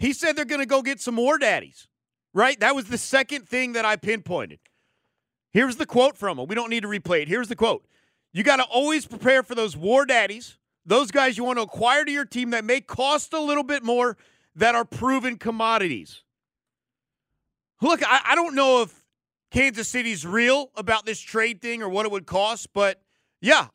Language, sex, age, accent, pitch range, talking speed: English, male, 40-59, American, 180-245 Hz, 205 wpm